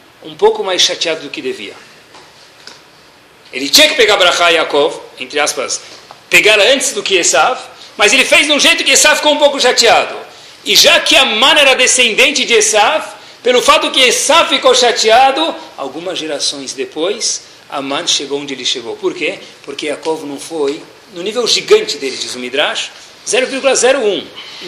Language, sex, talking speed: Portuguese, male, 170 wpm